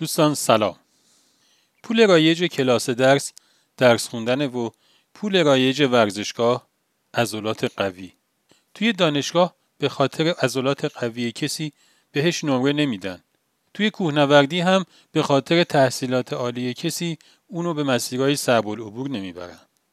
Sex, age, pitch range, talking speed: male, 40-59, 125-165 Hz, 115 wpm